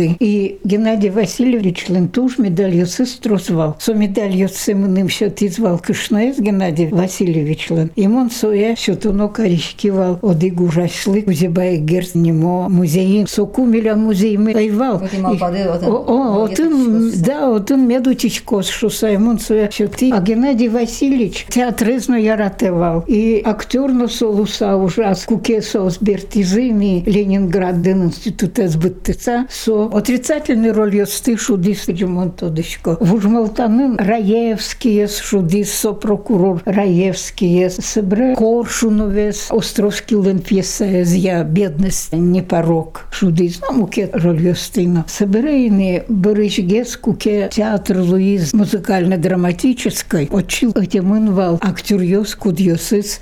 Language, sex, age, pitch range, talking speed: Russian, female, 60-79, 185-225 Hz, 100 wpm